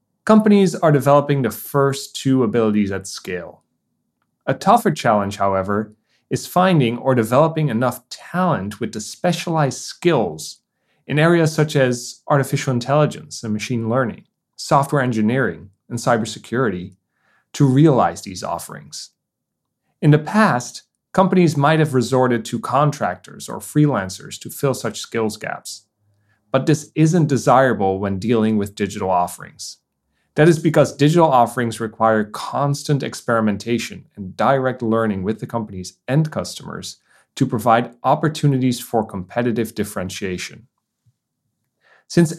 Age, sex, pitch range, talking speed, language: 30-49, male, 105-150 Hz, 125 wpm, English